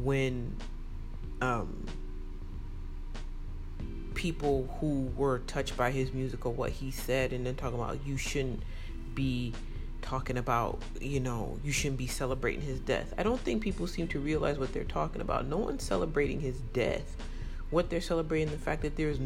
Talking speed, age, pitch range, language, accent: 170 wpm, 30-49, 115-170 Hz, English, American